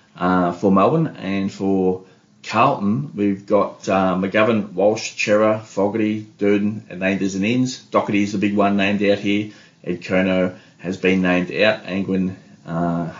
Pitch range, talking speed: 90-110 Hz, 160 wpm